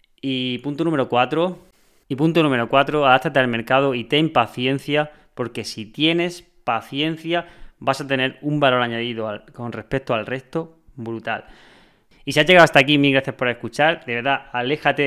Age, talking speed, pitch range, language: 20-39, 175 wpm, 115-145 Hz, Spanish